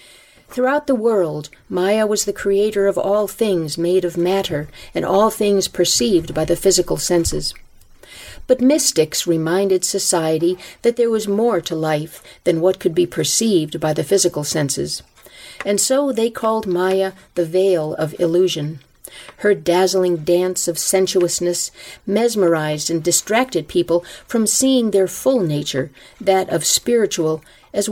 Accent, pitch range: American, 165-205 Hz